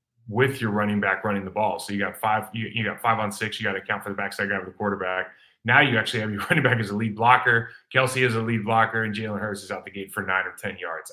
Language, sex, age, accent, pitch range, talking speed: English, male, 30-49, American, 105-125 Hz, 300 wpm